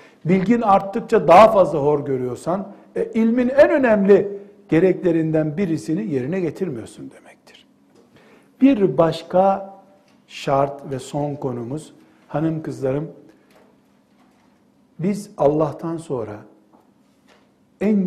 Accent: native